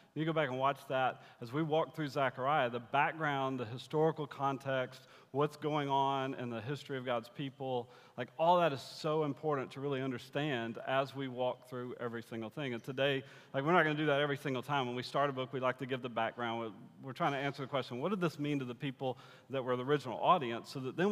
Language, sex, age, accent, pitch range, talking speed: English, male, 40-59, American, 125-150 Hz, 240 wpm